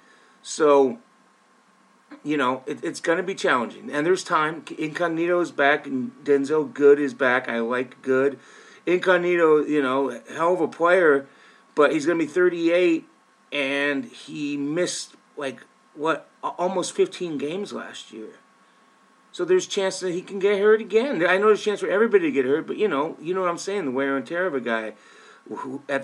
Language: English